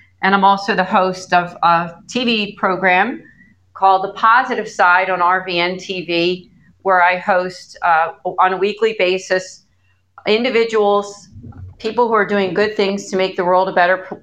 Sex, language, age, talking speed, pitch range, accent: female, English, 40-59, 155 wpm, 175-205 Hz, American